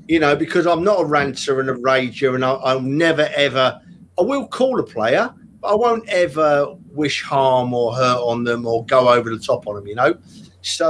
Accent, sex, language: British, male, English